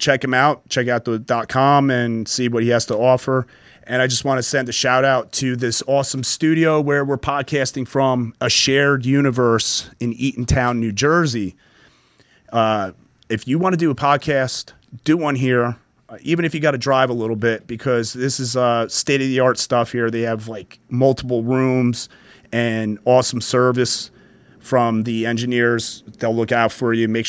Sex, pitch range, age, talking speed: male, 115-135 Hz, 30-49, 180 wpm